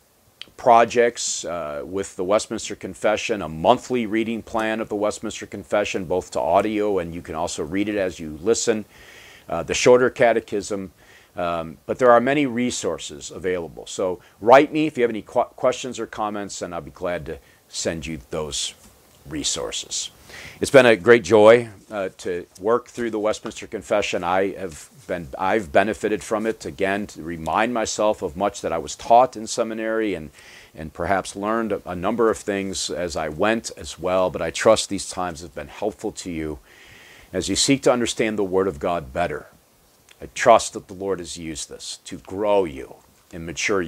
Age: 40-59